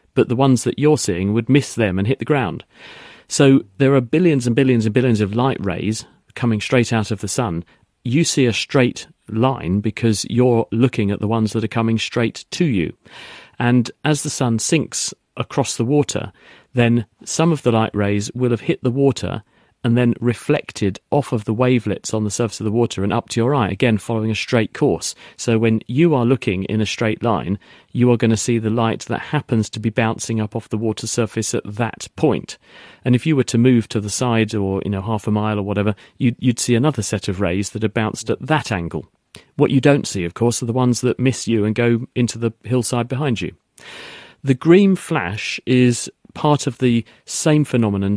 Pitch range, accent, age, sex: 110-125 Hz, British, 40-59, male